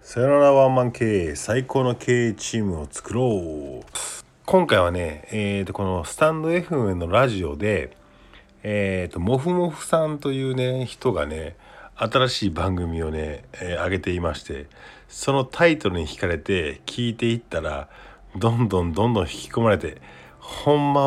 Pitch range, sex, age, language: 95-130 Hz, male, 50-69, Japanese